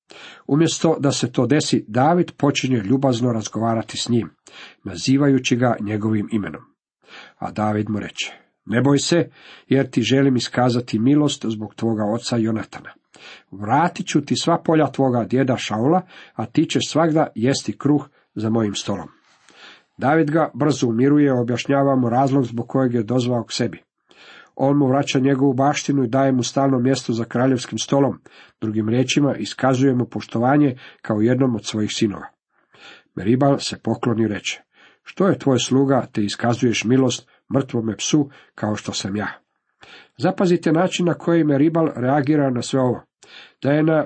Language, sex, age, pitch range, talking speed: Croatian, male, 50-69, 115-140 Hz, 155 wpm